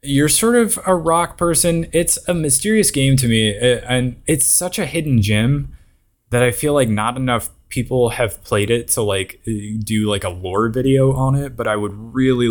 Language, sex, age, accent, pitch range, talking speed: English, male, 20-39, American, 95-120 Hz, 200 wpm